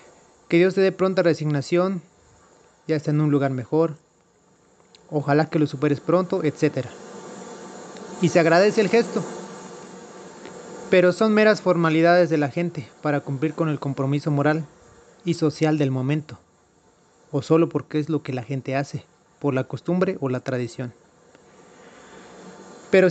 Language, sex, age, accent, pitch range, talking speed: Spanish, male, 30-49, Mexican, 145-175 Hz, 145 wpm